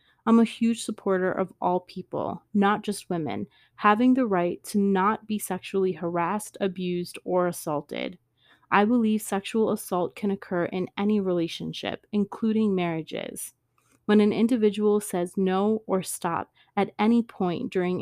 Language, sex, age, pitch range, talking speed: English, female, 30-49, 180-210 Hz, 145 wpm